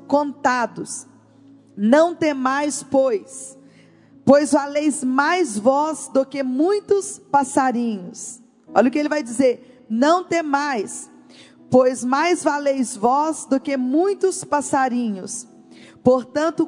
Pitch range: 255-300 Hz